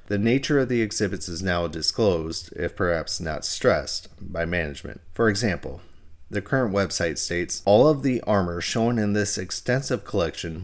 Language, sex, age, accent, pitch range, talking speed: English, male, 30-49, American, 85-110 Hz, 165 wpm